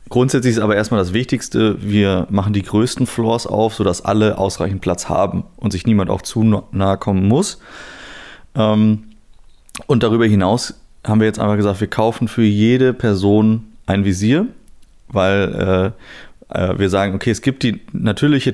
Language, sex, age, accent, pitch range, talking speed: German, male, 20-39, German, 95-110 Hz, 155 wpm